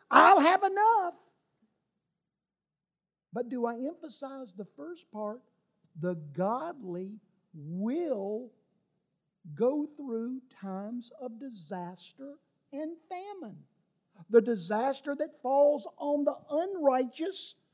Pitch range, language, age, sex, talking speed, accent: 200-310 Hz, English, 50-69, male, 90 wpm, American